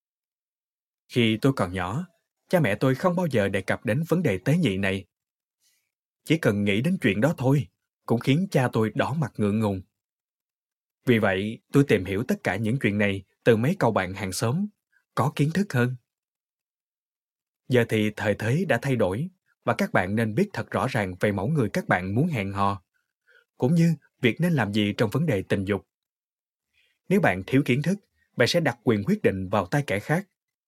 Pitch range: 105-155 Hz